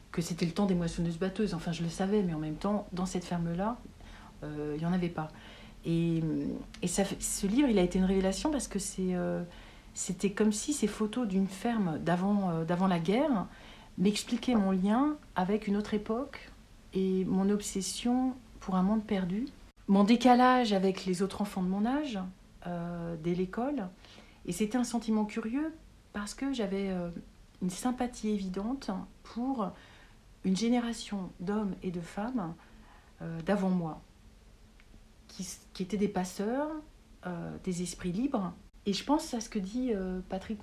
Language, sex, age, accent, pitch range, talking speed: French, female, 50-69, French, 180-225 Hz, 170 wpm